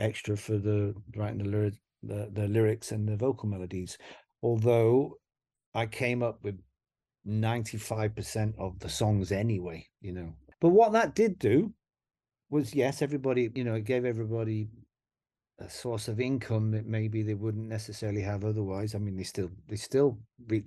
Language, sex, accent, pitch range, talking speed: English, male, British, 110-135 Hz, 165 wpm